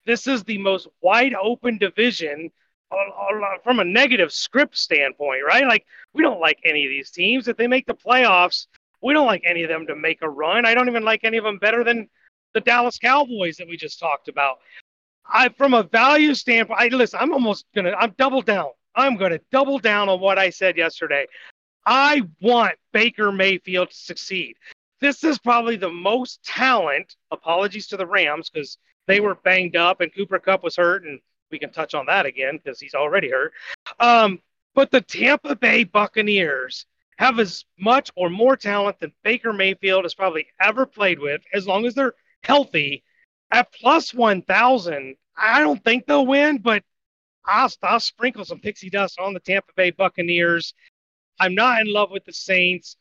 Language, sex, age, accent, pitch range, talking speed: English, male, 30-49, American, 180-240 Hz, 190 wpm